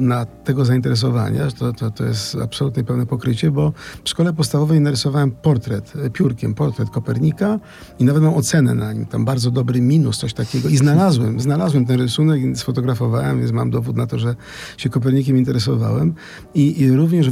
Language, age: Polish, 50-69